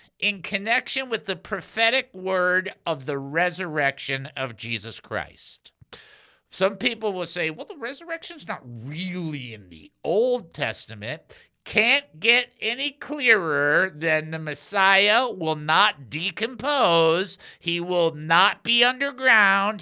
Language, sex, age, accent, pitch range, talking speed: English, male, 50-69, American, 145-210 Hz, 120 wpm